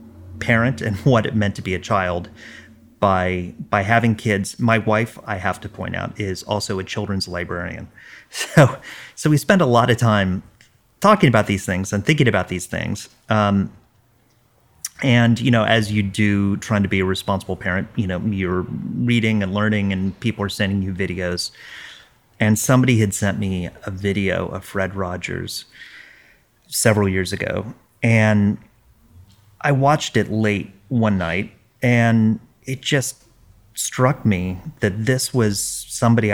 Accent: American